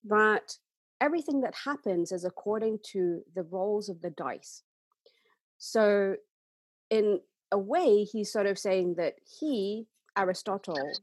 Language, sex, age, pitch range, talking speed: English, female, 40-59, 180-260 Hz, 125 wpm